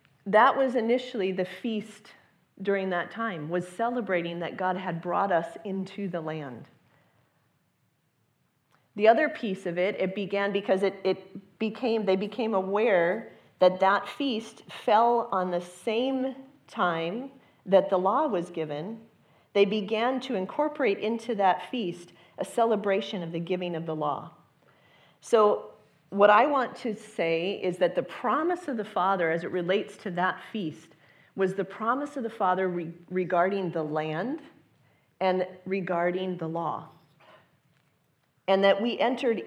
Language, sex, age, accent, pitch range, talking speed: English, female, 40-59, American, 170-220 Hz, 145 wpm